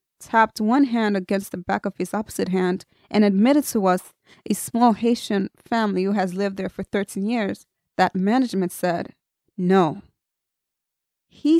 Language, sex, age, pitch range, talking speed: English, female, 20-39, 195-230 Hz, 155 wpm